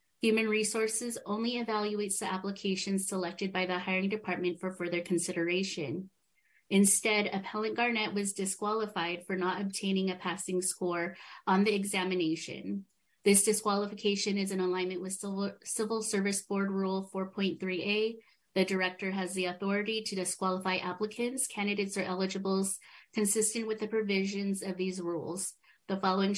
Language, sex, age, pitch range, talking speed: English, female, 30-49, 185-210 Hz, 135 wpm